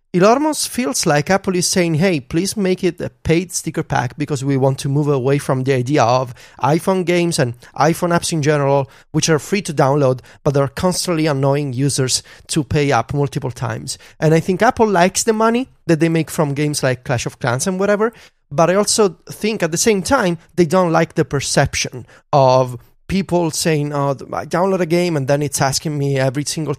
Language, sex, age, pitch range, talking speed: English, male, 30-49, 140-185 Hz, 205 wpm